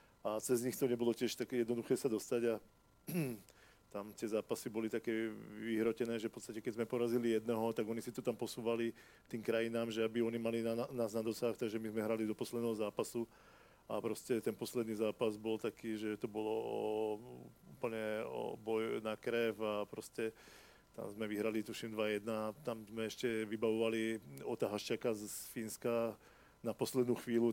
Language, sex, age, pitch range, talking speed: Czech, male, 40-59, 110-120 Hz, 175 wpm